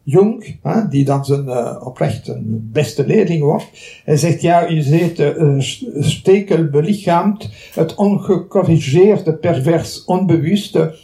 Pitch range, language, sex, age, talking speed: 145-190 Hz, Dutch, male, 60-79, 110 wpm